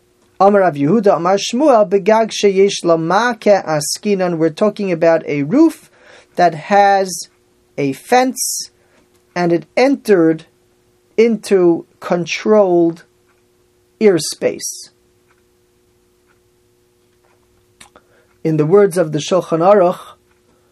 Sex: male